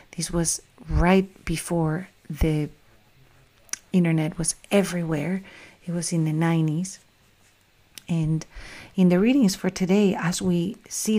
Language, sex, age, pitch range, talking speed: English, female, 40-59, 160-185 Hz, 120 wpm